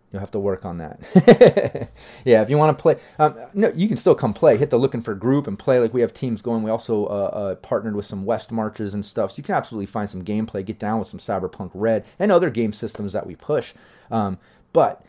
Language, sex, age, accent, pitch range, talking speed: English, male, 30-49, American, 100-120 Hz, 255 wpm